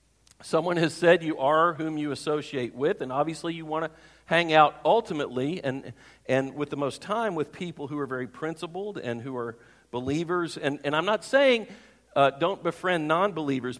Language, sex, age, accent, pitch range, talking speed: English, male, 50-69, American, 140-180 Hz, 185 wpm